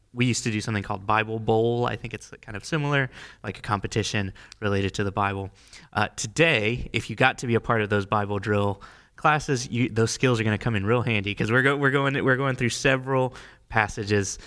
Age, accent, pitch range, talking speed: 20-39, American, 105-130 Hz, 225 wpm